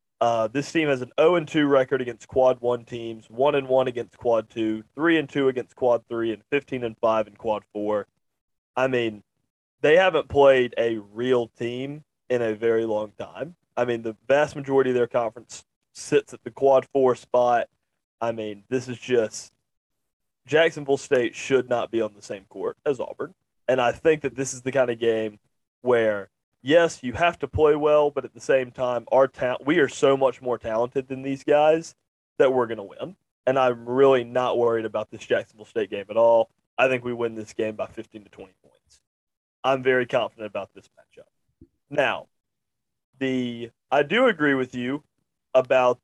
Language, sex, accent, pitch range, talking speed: English, male, American, 115-135 Hz, 195 wpm